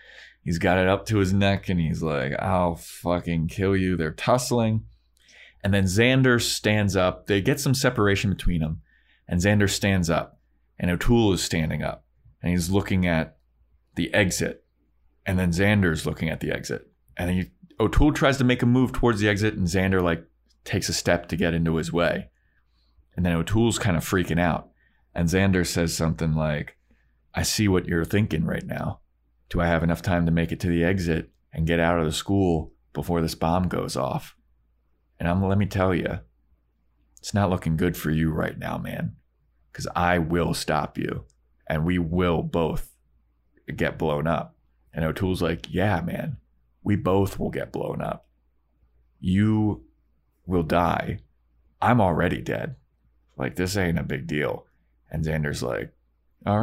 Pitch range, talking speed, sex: 75-95 Hz, 175 wpm, male